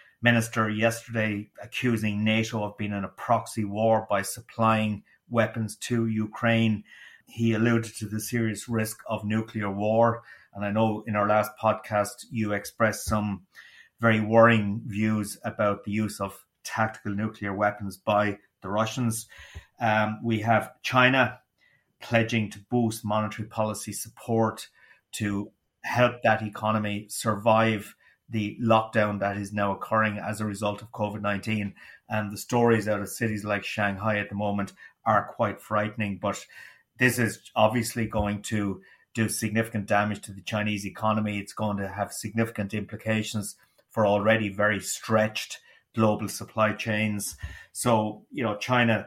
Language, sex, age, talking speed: English, male, 30-49, 145 wpm